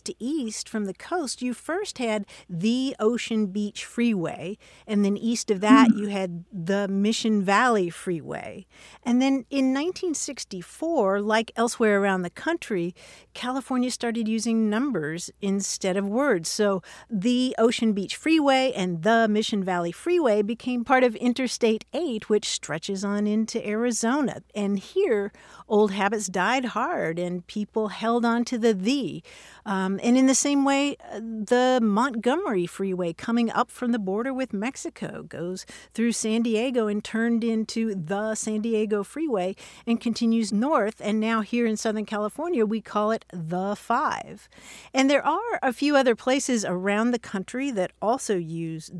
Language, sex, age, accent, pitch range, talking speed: English, female, 50-69, American, 195-245 Hz, 155 wpm